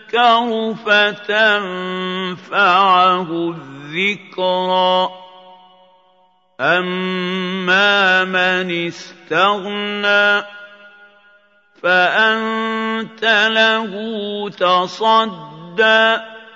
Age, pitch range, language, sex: 50-69, 185-210 Hz, Arabic, male